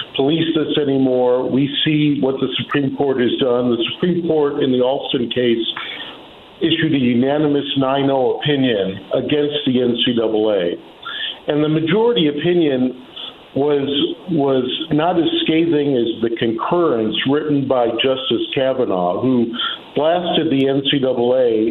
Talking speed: 125 wpm